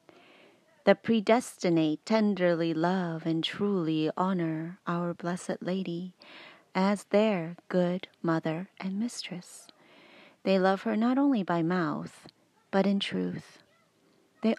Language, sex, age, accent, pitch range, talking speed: English, female, 30-49, American, 175-225 Hz, 110 wpm